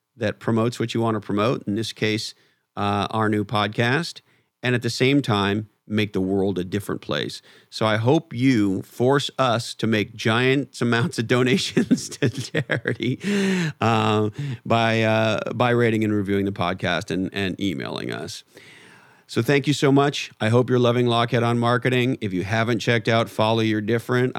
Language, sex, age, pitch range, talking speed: English, male, 40-59, 100-120 Hz, 175 wpm